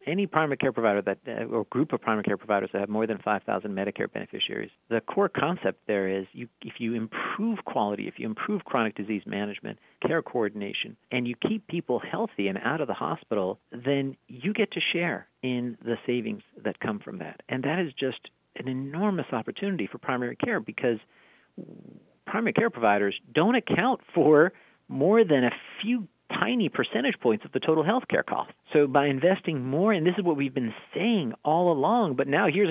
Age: 50-69